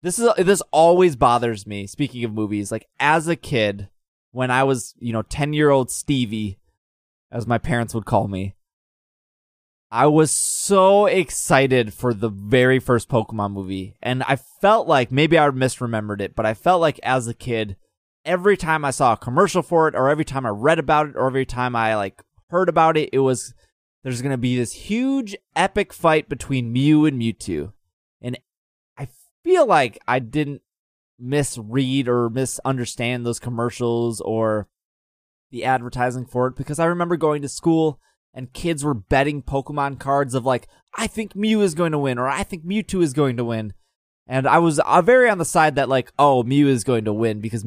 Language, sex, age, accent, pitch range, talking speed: English, male, 20-39, American, 115-155 Hz, 190 wpm